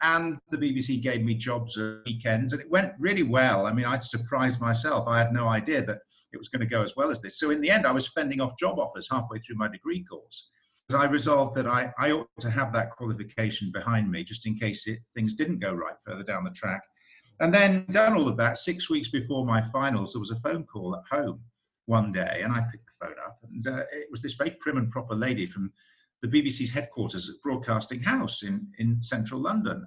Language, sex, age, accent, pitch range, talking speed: English, male, 50-69, British, 115-180 Hz, 240 wpm